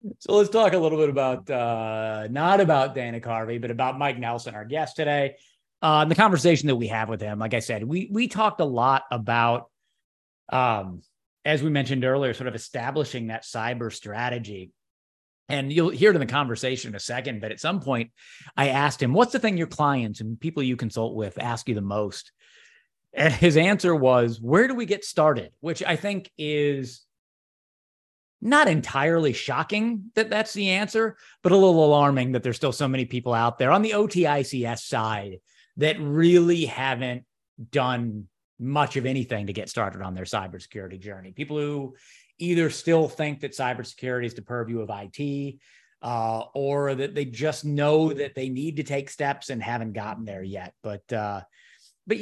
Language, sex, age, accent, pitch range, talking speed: English, male, 30-49, American, 115-155 Hz, 185 wpm